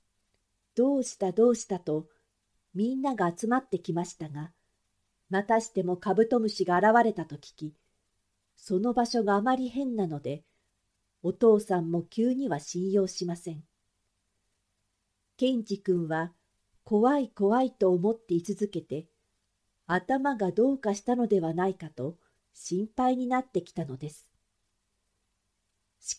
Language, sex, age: Japanese, female, 50-69